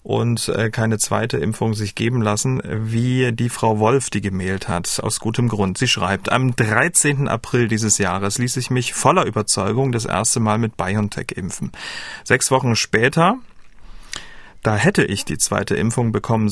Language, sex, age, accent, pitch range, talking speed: German, male, 40-59, German, 110-130 Hz, 165 wpm